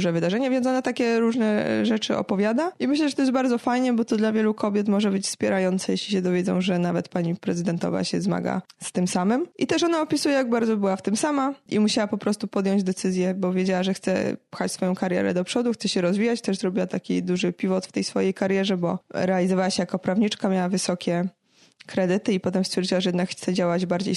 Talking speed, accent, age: 220 wpm, native, 20-39